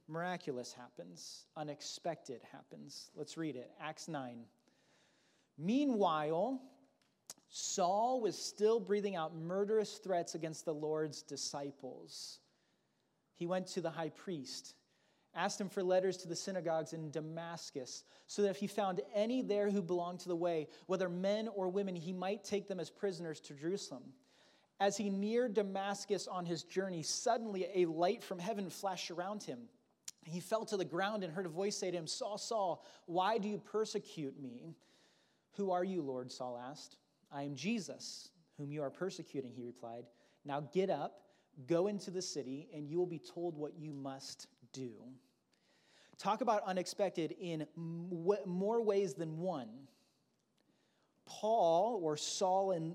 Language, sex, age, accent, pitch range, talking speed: English, male, 30-49, American, 155-200 Hz, 155 wpm